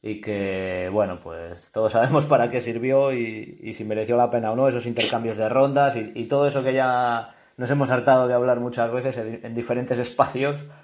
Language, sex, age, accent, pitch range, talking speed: Spanish, male, 20-39, Spanish, 115-140 Hz, 210 wpm